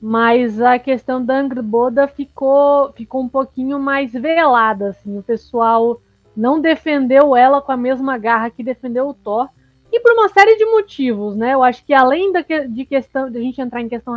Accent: Brazilian